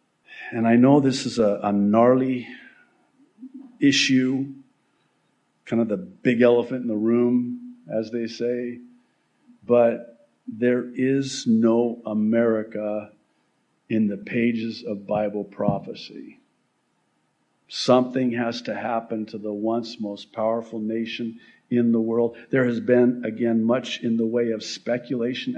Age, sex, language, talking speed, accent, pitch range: 50-69, male, English, 125 wpm, American, 110-130 Hz